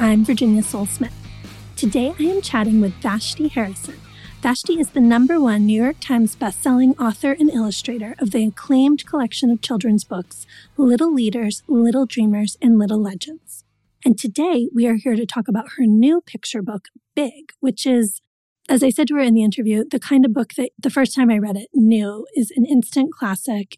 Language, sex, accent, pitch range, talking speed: English, female, American, 210-260 Hz, 190 wpm